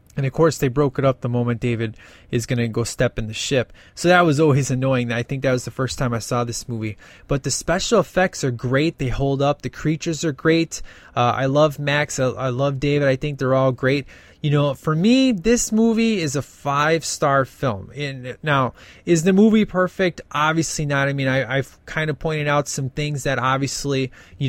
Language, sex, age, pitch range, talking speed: English, male, 20-39, 125-155 Hz, 225 wpm